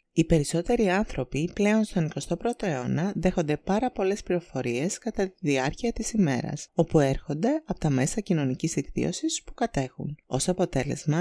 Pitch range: 135-200 Hz